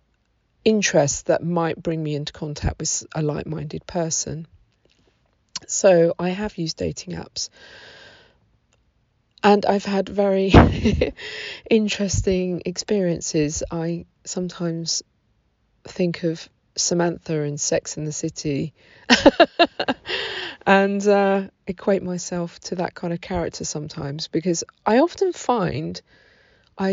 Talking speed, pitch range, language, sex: 110 wpm, 155-190 Hz, English, female